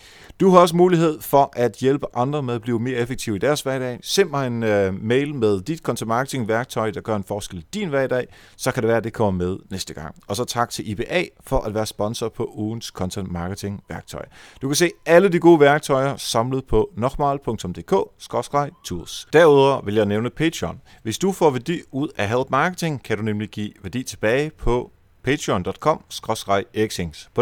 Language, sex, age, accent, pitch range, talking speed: Danish, male, 30-49, native, 100-140 Hz, 195 wpm